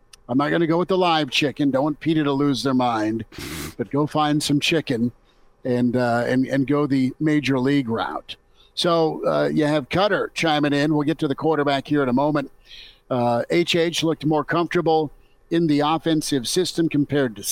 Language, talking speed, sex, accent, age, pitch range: English, 195 wpm, male, American, 50-69, 135-160 Hz